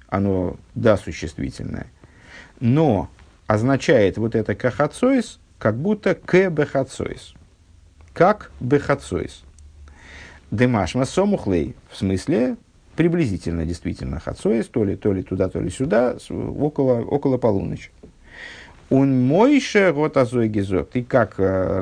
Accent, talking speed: native, 110 wpm